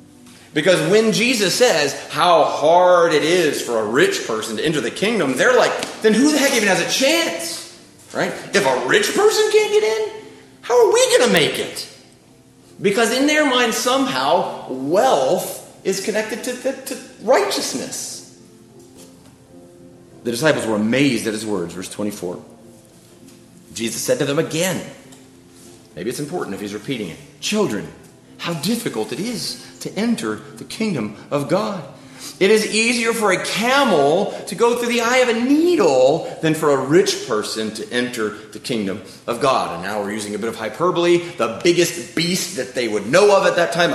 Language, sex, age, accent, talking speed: English, male, 30-49, American, 175 wpm